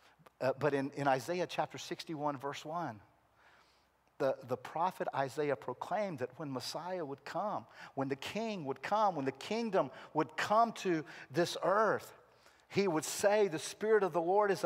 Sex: male